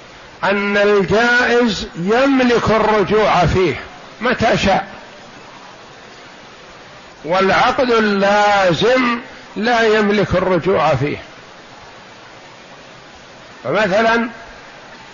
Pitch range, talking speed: 180-220 Hz, 55 wpm